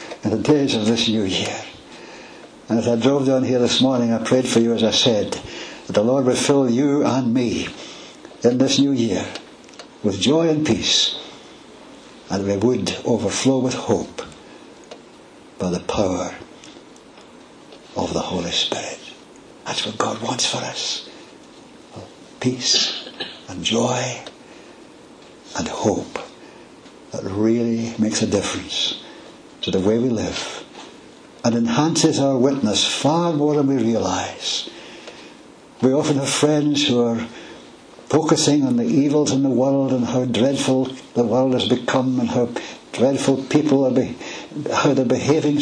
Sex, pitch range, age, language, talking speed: male, 115-140 Hz, 60-79, English, 145 wpm